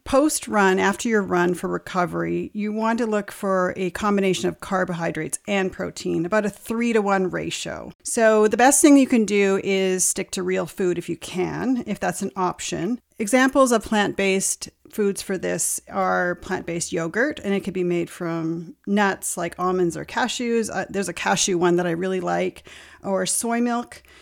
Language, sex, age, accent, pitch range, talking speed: English, female, 40-59, American, 180-225 Hz, 185 wpm